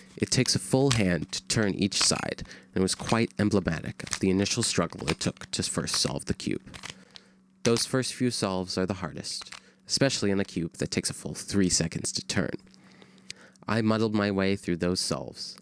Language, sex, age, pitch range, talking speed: English, male, 30-49, 90-115 Hz, 195 wpm